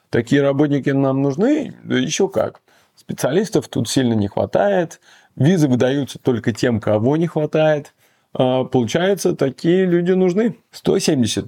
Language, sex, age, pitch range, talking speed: Russian, male, 20-39, 115-155 Hz, 130 wpm